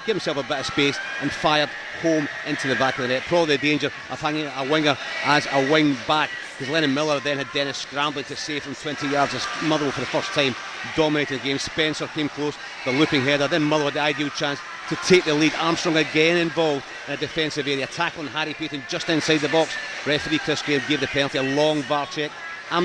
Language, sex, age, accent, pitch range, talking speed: English, male, 40-59, British, 135-155 Hz, 235 wpm